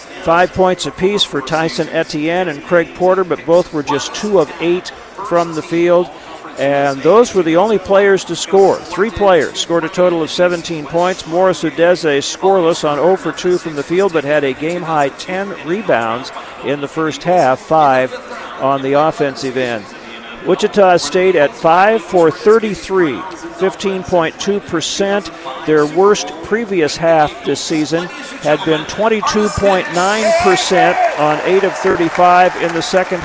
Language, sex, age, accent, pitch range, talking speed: English, male, 50-69, American, 150-185 Hz, 150 wpm